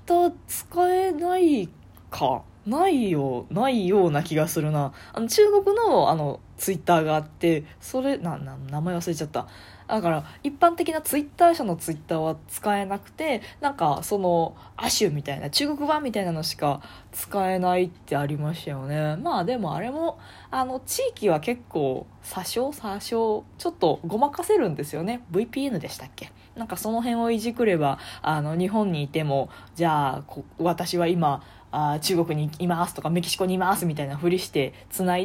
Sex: female